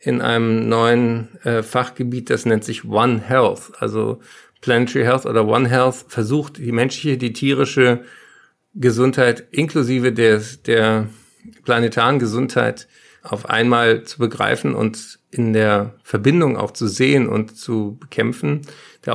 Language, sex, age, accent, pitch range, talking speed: German, male, 50-69, German, 110-130 Hz, 130 wpm